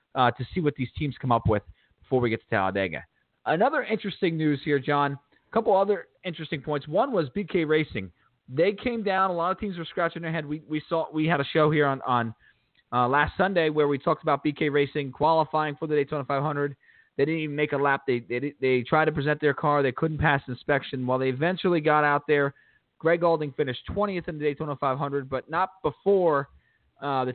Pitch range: 140-170 Hz